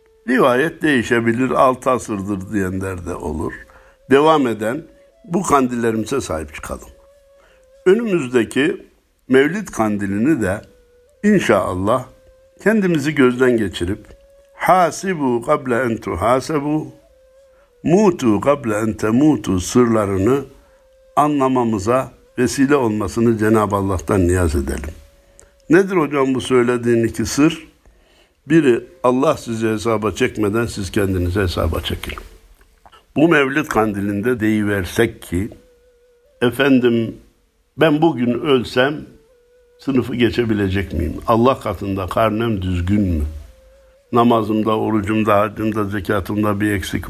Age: 60-79